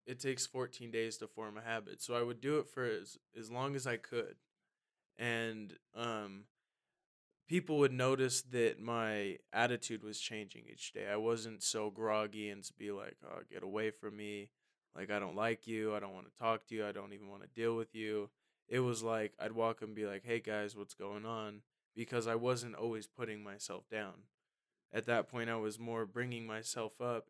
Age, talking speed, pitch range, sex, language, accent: 20-39, 205 wpm, 105-120 Hz, male, English, American